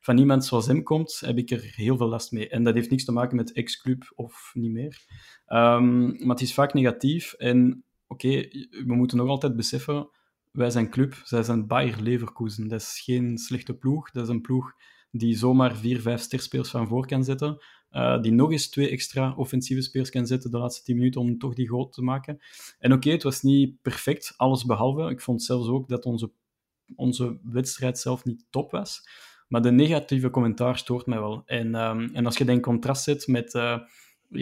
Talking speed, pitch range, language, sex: 210 wpm, 120-130 Hz, Dutch, male